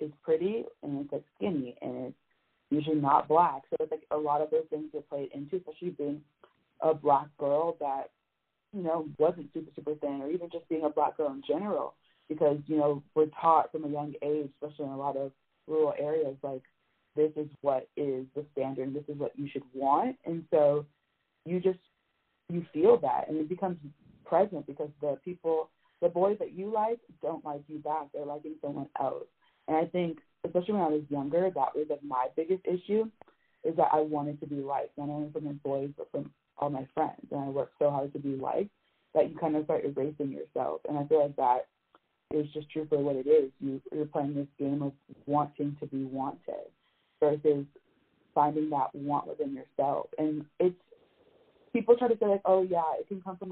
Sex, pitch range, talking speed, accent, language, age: female, 145-170 Hz, 210 wpm, American, English, 30-49